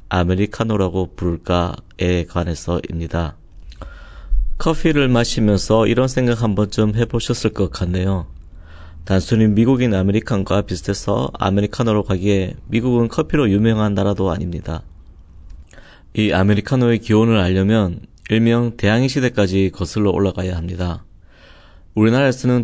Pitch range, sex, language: 90-115 Hz, male, Korean